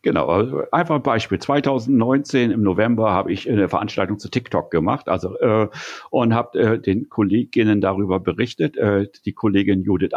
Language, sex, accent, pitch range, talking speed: German, male, German, 100-125 Hz, 165 wpm